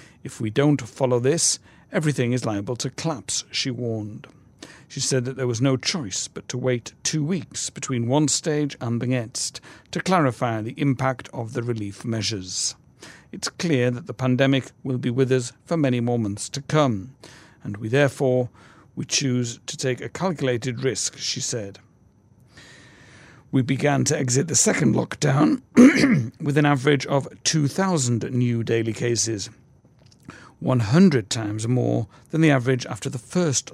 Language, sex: English, male